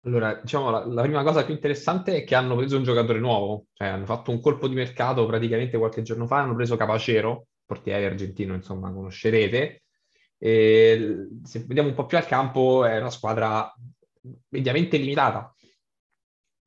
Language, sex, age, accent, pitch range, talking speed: Italian, male, 20-39, native, 110-135 Hz, 170 wpm